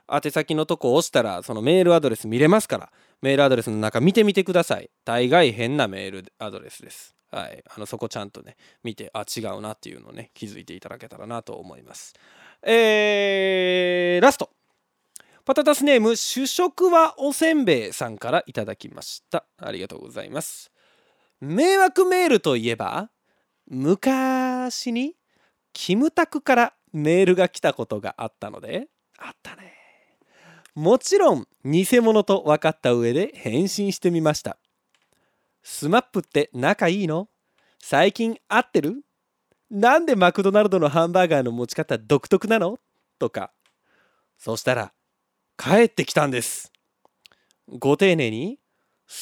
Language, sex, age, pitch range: Japanese, male, 20-39, 150-240 Hz